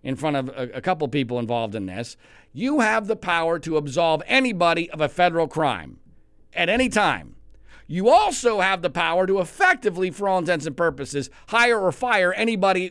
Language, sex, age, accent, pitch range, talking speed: English, male, 50-69, American, 130-220 Hz, 180 wpm